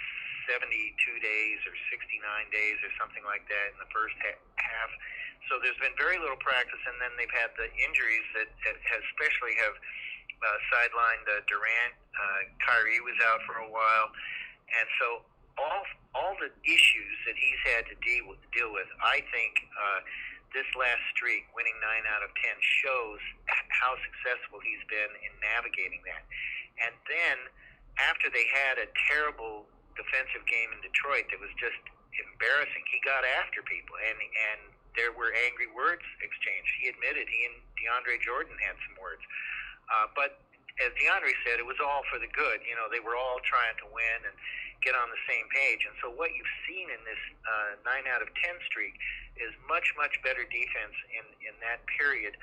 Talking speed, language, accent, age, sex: 175 wpm, English, American, 50-69, male